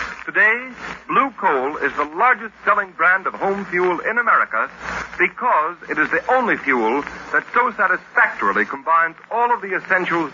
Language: English